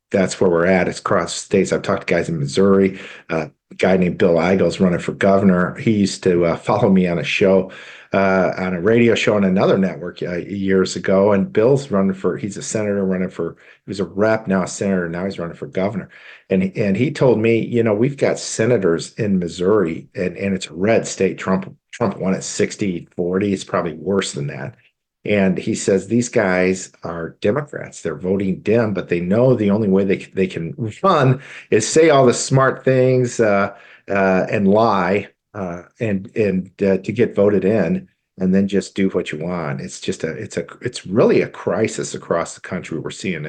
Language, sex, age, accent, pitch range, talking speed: English, male, 50-69, American, 95-115 Hz, 205 wpm